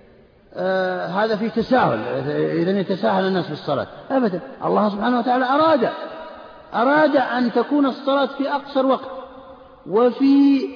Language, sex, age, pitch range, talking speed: Arabic, male, 50-69, 190-270 Hz, 115 wpm